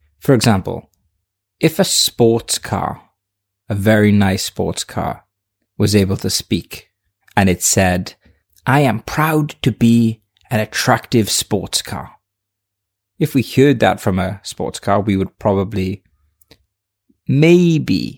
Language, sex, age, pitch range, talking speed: English, male, 20-39, 95-115 Hz, 130 wpm